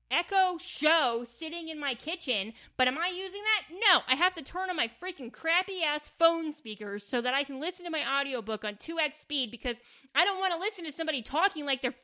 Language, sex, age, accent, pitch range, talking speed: English, female, 30-49, American, 220-345 Hz, 225 wpm